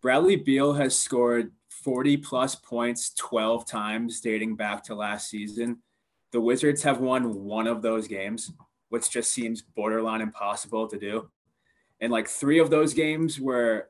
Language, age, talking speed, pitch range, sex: English, 20-39, 155 wpm, 110-125 Hz, male